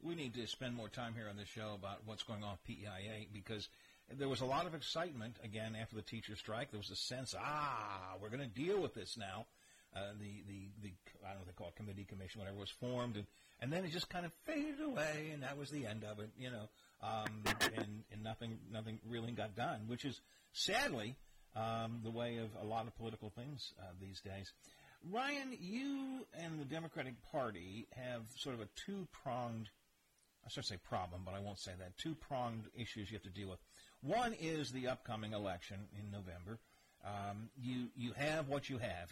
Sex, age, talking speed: male, 50-69, 215 wpm